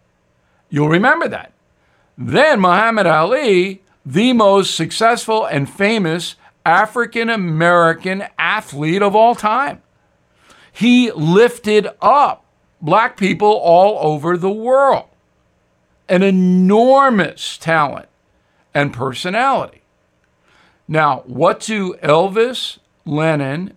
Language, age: English, 60-79